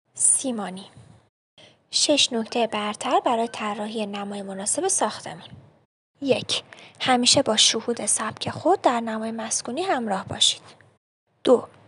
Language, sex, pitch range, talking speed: Persian, female, 210-270 Hz, 100 wpm